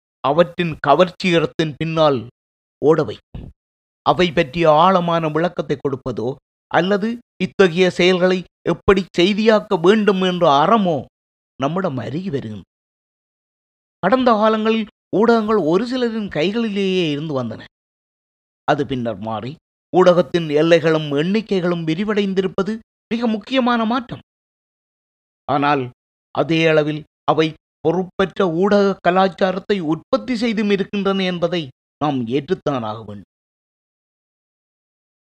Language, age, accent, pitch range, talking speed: Tamil, 30-49, native, 140-195 Hz, 85 wpm